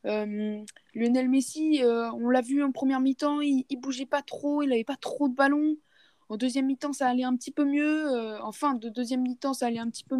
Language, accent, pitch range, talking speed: French, French, 230-270 Hz, 235 wpm